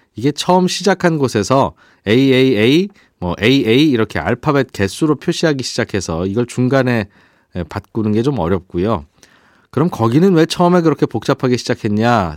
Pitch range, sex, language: 105-150 Hz, male, Korean